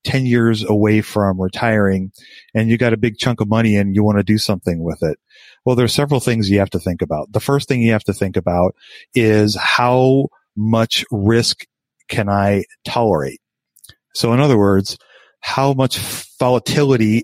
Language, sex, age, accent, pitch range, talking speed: English, male, 40-59, American, 100-120 Hz, 180 wpm